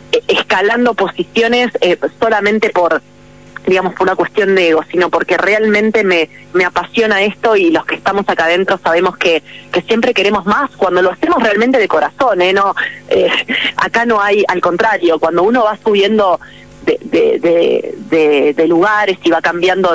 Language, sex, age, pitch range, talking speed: Spanish, female, 20-39, 170-230 Hz, 170 wpm